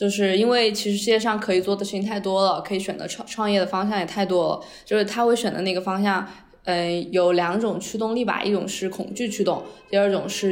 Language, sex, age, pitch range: Chinese, female, 20-39, 185-225 Hz